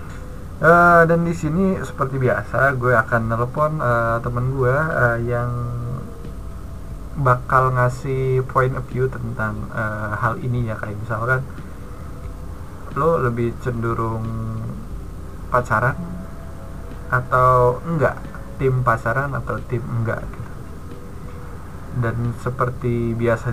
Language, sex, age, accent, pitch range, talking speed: Indonesian, male, 20-39, native, 110-130 Hz, 105 wpm